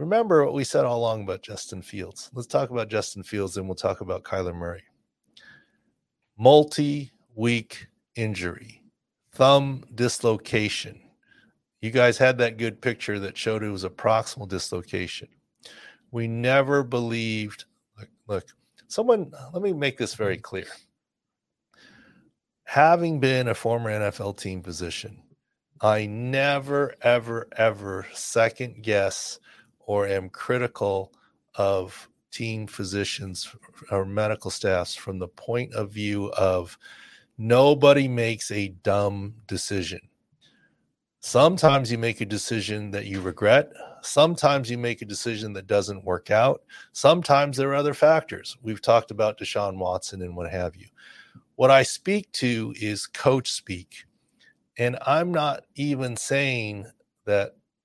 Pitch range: 100-130 Hz